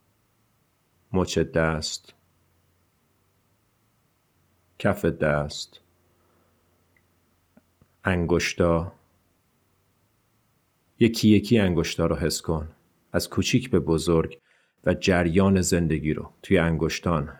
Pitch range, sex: 85-105 Hz, male